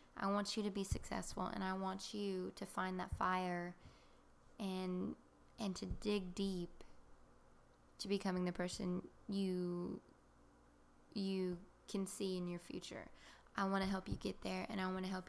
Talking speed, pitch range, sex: 165 wpm, 175-195 Hz, female